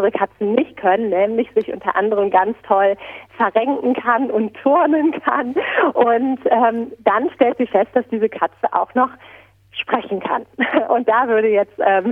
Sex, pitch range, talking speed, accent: female, 190-275 Hz, 160 wpm, German